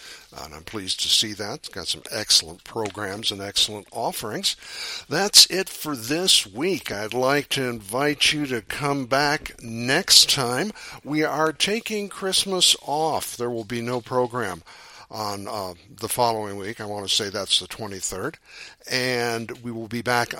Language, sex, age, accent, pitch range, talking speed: English, male, 60-79, American, 110-140 Hz, 165 wpm